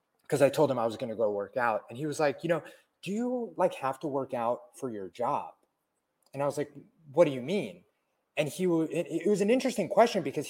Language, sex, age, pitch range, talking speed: English, male, 30-49, 130-185 Hz, 255 wpm